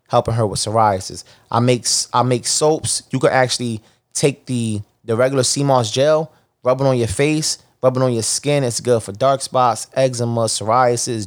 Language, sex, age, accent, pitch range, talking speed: English, male, 20-39, American, 110-130 Hz, 185 wpm